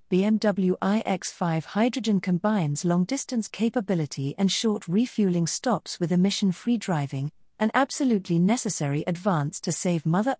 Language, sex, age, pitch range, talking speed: English, female, 40-59, 160-215 Hz, 115 wpm